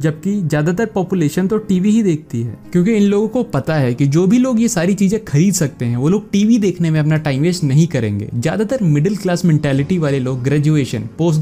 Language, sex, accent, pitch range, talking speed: Hindi, male, native, 130-175 Hz, 220 wpm